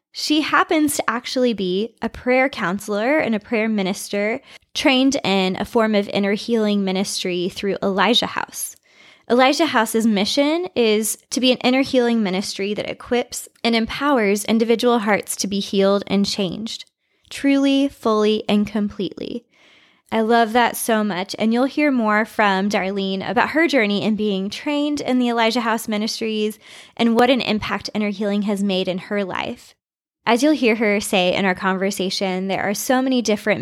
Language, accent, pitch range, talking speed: English, American, 200-245 Hz, 170 wpm